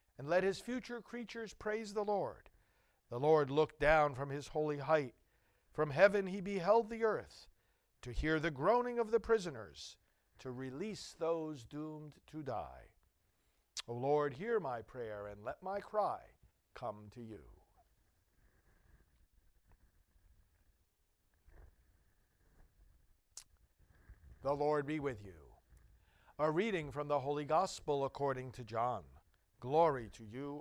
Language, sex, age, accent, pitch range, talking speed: English, male, 60-79, American, 100-160 Hz, 125 wpm